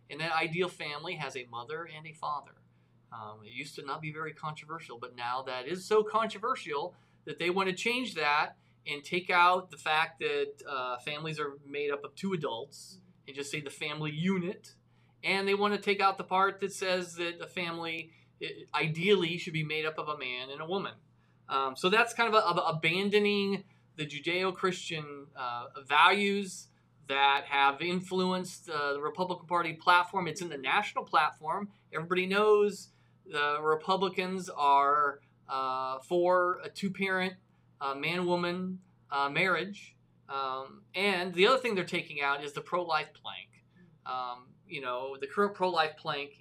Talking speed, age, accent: 165 wpm, 30-49, American